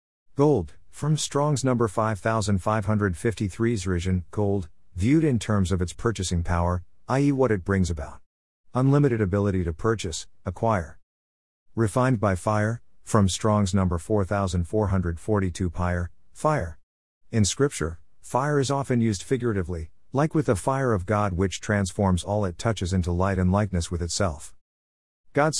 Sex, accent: male, American